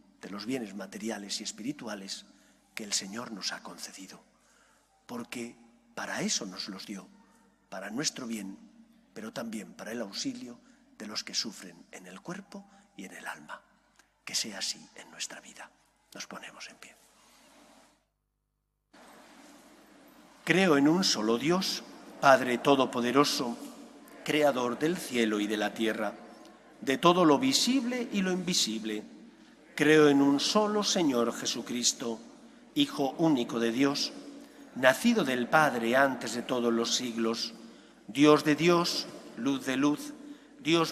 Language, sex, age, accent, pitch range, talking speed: English, male, 40-59, Spanish, 120-200 Hz, 135 wpm